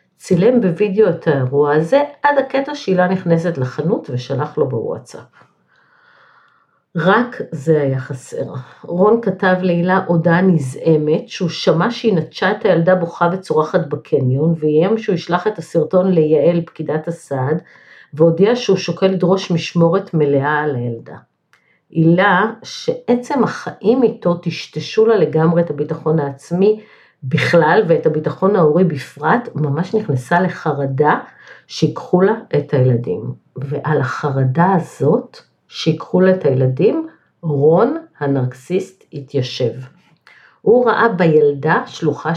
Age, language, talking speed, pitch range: 50-69, Hebrew, 120 wpm, 150-190 Hz